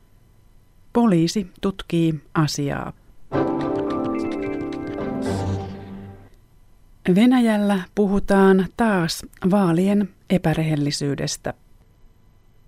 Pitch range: 125-180 Hz